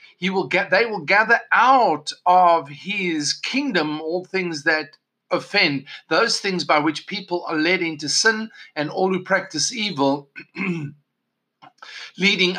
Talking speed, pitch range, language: 140 wpm, 160-215 Hz, English